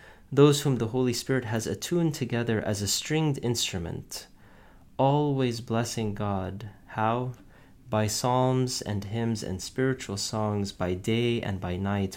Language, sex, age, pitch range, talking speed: English, male, 30-49, 100-120 Hz, 140 wpm